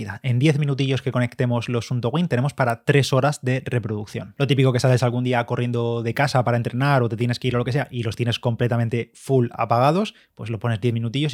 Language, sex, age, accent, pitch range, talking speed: Spanish, male, 20-39, Spanish, 115-130 Hz, 235 wpm